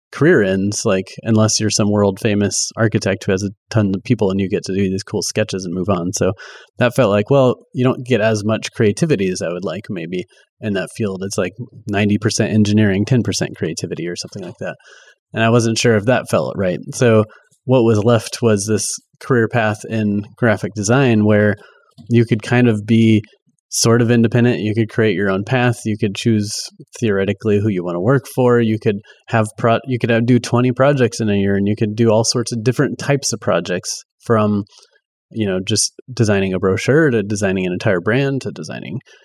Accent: American